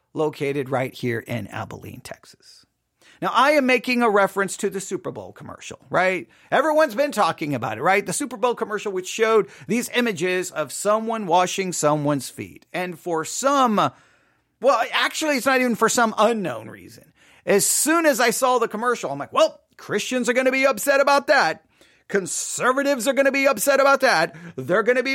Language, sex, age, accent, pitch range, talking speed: English, male, 40-59, American, 170-255 Hz, 190 wpm